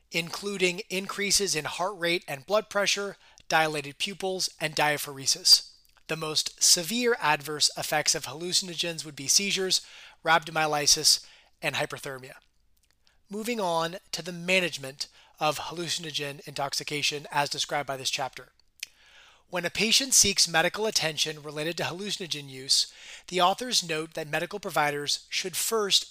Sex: male